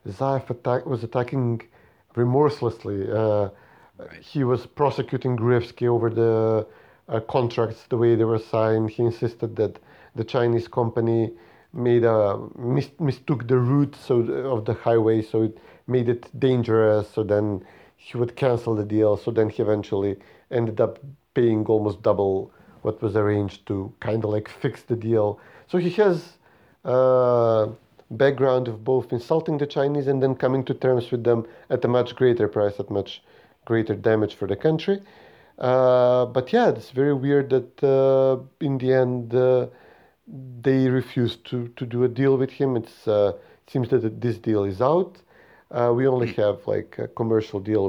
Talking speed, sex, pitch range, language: 165 wpm, male, 110-130 Hz, English